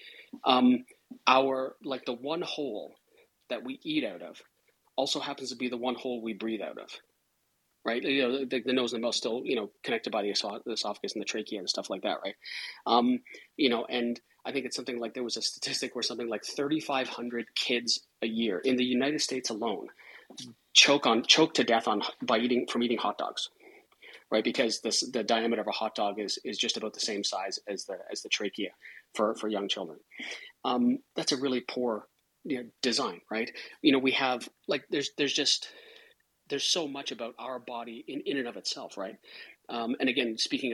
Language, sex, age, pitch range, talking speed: English, male, 30-49, 120-155 Hz, 205 wpm